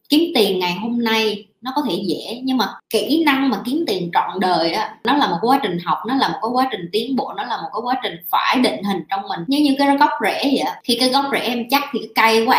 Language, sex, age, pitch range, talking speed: Vietnamese, male, 20-39, 205-270 Hz, 280 wpm